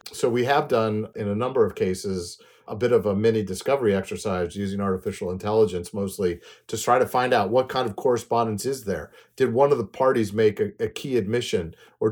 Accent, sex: American, male